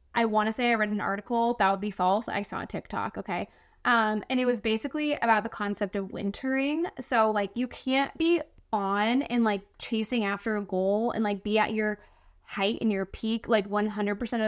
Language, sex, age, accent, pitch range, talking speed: English, female, 10-29, American, 200-240 Hz, 205 wpm